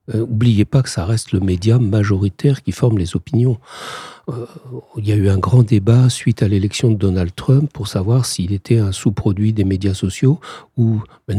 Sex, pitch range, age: male, 100-130 Hz, 60-79